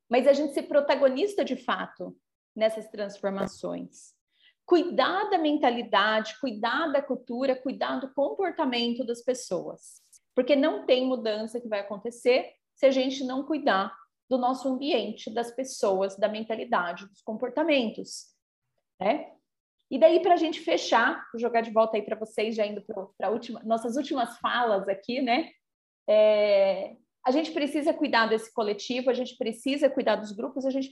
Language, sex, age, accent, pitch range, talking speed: Portuguese, female, 30-49, Brazilian, 220-280 Hz, 150 wpm